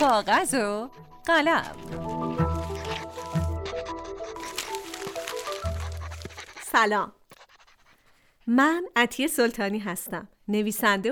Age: 40-59